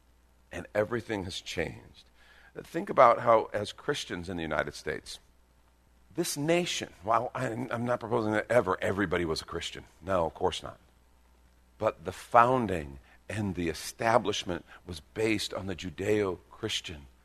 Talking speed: 140 wpm